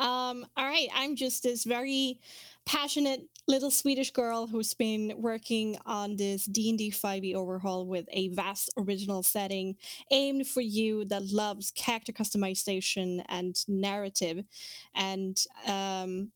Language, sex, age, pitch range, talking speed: English, female, 20-39, 200-250 Hz, 130 wpm